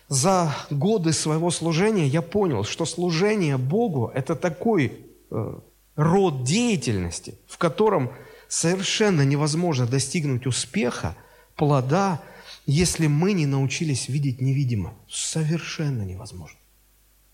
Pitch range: 125-170 Hz